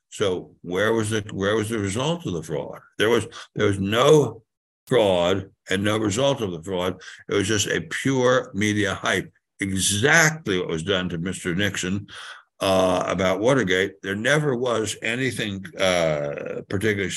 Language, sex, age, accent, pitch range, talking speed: English, male, 60-79, American, 95-120 Hz, 160 wpm